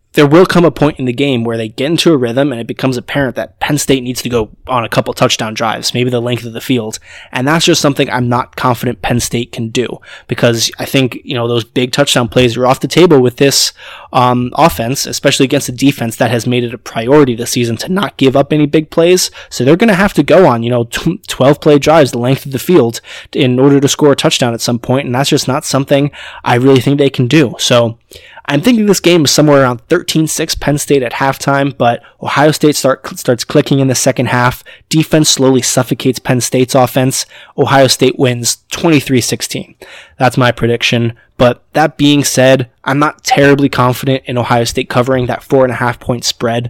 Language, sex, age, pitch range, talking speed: English, male, 20-39, 120-145 Hz, 225 wpm